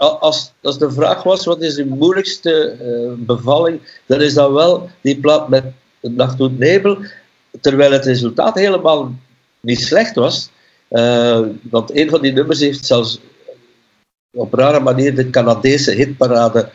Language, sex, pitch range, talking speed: Dutch, male, 115-145 Hz, 145 wpm